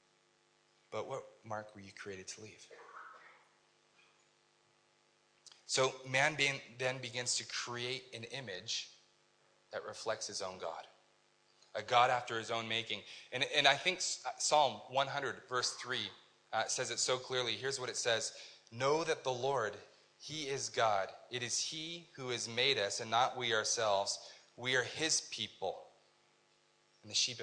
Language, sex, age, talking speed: English, male, 20-39, 155 wpm